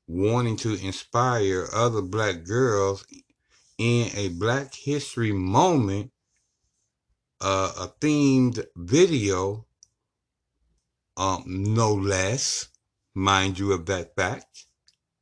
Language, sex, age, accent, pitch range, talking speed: English, male, 60-79, American, 100-135 Hz, 90 wpm